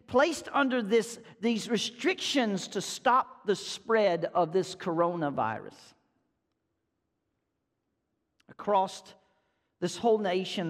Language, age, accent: English, 50-69, American